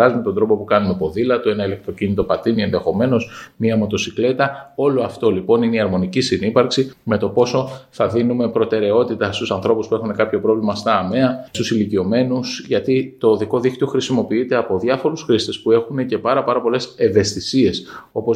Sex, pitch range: male, 110-135 Hz